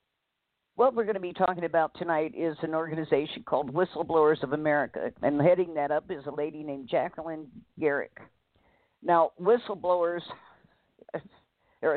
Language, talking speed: English, 140 wpm